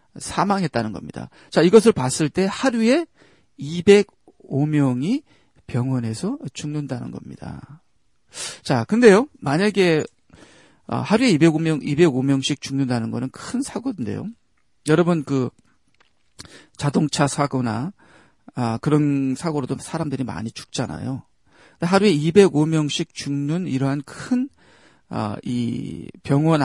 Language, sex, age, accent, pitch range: Korean, male, 40-59, native, 130-190 Hz